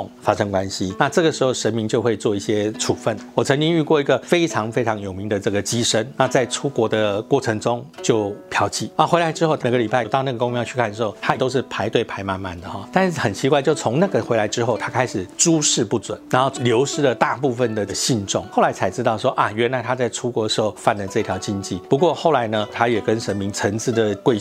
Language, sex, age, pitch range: Chinese, male, 50-69, 110-145 Hz